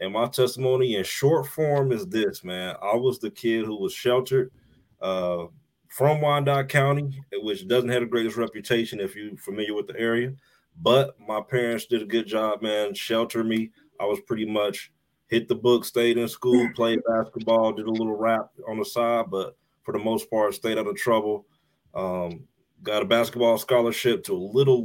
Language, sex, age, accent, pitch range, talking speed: English, male, 30-49, American, 105-125 Hz, 190 wpm